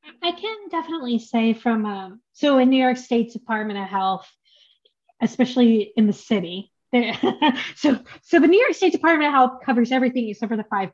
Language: English